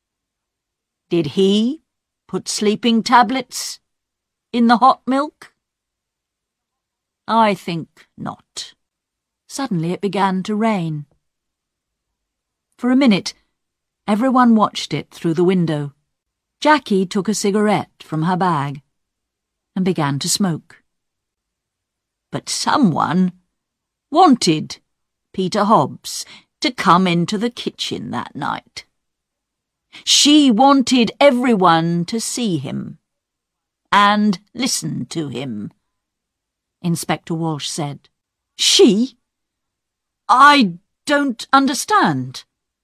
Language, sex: Chinese, female